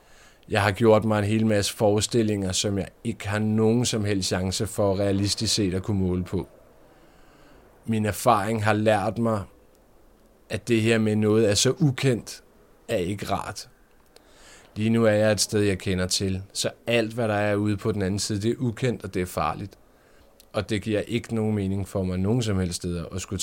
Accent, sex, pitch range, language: native, male, 95-110 Hz, Danish